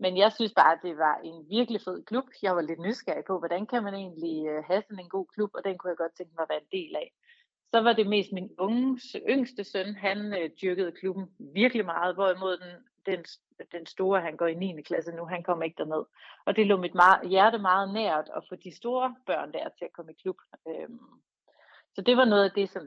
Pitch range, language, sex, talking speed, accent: 170-210 Hz, Danish, female, 240 wpm, native